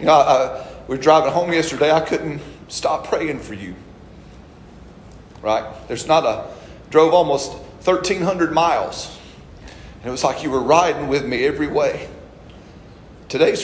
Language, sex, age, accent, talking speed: English, male, 40-59, American, 145 wpm